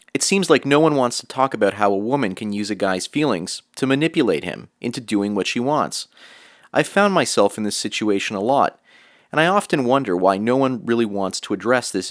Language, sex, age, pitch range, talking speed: English, male, 30-49, 105-145 Hz, 225 wpm